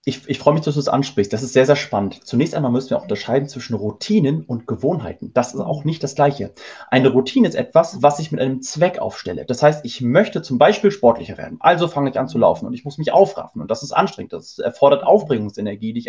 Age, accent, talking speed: 30-49, German, 245 wpm